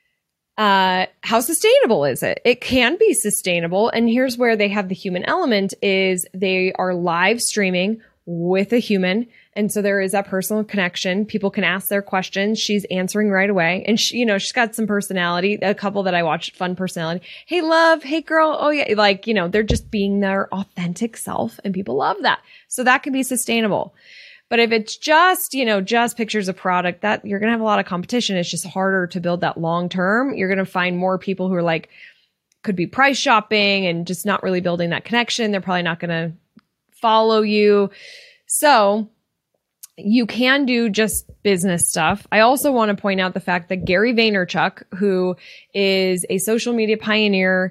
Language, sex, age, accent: English, female, 20-39, American